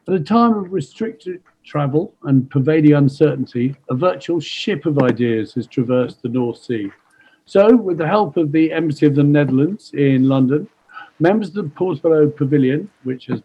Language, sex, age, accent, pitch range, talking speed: English, male, 50-69, British, 130-165 Hz, 170 wpm